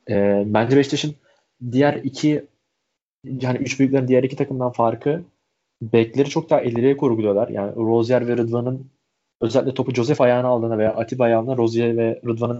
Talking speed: 150 wpm